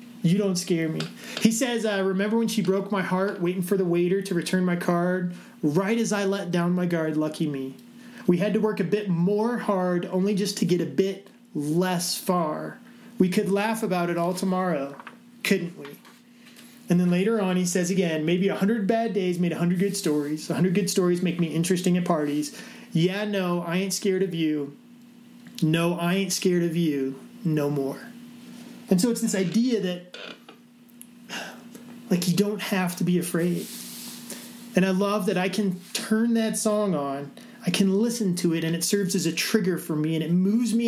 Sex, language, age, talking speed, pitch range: male, English, 30-49, 195 wpm, 175-230 Hz